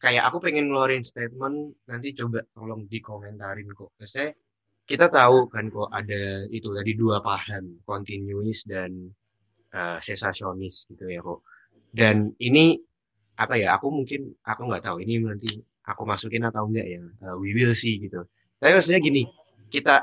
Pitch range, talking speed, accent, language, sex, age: 105-135 Hz, 155 wpm, native, Indonesian, male, 20-39